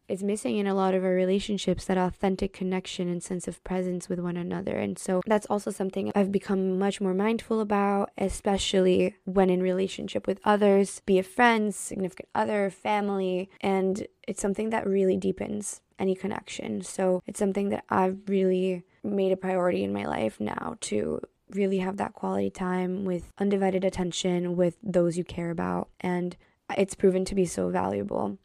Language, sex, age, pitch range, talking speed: English, female, 20-39, 185-210 Hz, 175 wpm